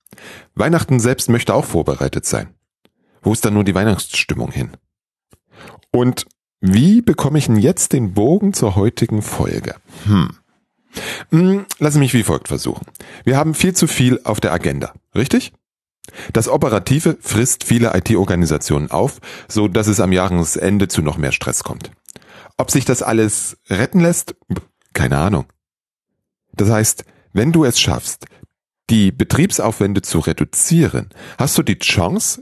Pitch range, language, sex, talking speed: 90-125 Hz, German, male, 145 wpm